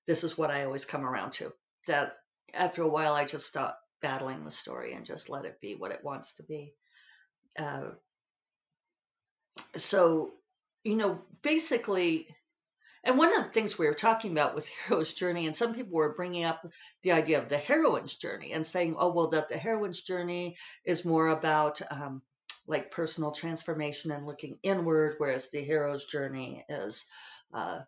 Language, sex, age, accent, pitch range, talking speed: English, female, 50-69, American, 150-180 Hz, 175 wpm